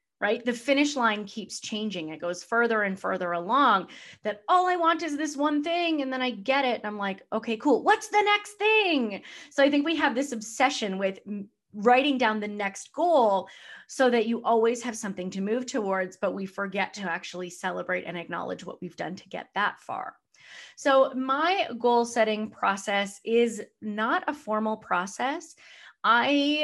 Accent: American